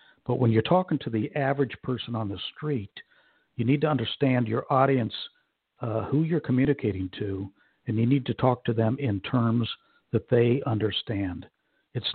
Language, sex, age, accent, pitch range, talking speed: English, male, 60-79, American, 110-130 Hz, 175 wpm